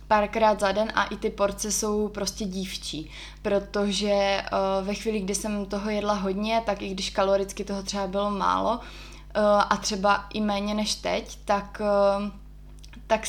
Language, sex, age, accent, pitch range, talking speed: Czech, female, 20-39, native, 195-215 Hz, 155 wpm